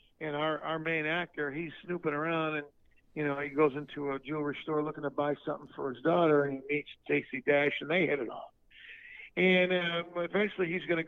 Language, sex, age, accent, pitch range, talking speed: English, male, 50-69, American, 150-185 Hz, 215 wpm